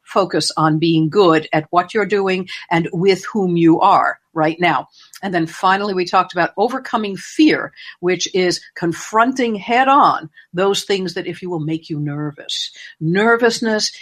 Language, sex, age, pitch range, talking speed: English, female, 60-79, 165-215 Hz, 160 wpm